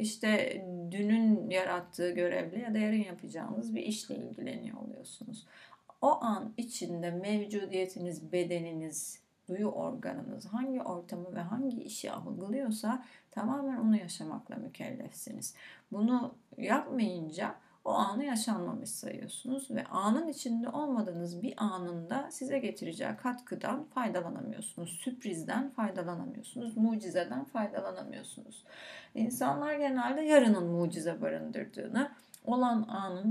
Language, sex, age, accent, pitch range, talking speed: Turkish, female, 30-49, native, 200-250 Hz, 100 wpm